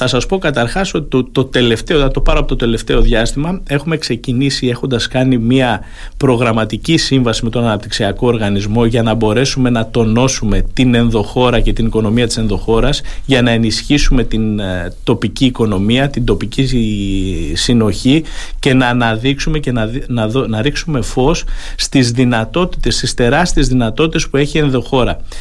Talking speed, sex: 155 wpm, male